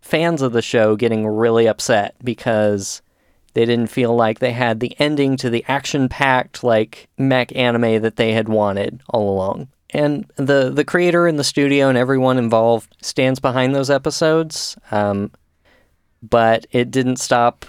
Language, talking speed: English, 160 wpm